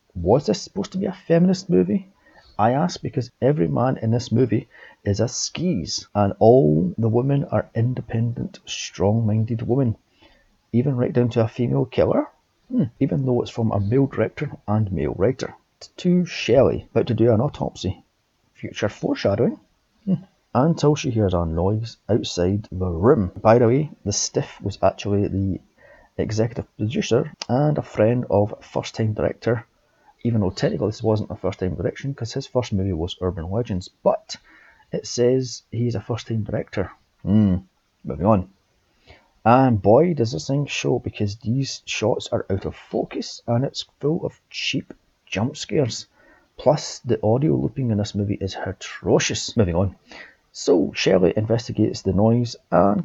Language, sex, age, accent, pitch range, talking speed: English, male, 30-49, British, 100-130 Hz, 160 wpm